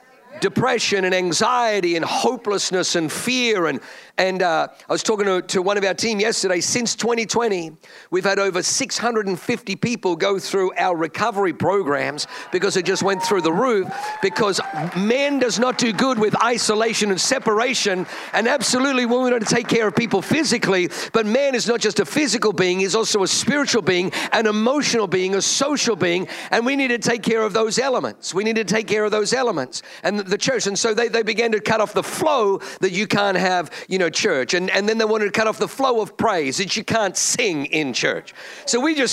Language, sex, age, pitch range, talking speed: English, male, 50-69, 185-235 Hz, 210 wpm